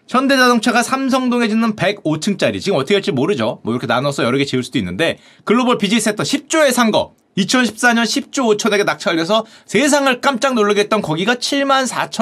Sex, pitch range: male, 195-260 Hz